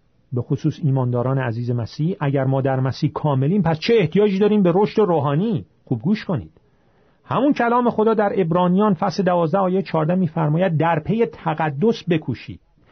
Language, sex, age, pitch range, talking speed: Persian, male, 40-59, 145-195 Hz, 160 wpm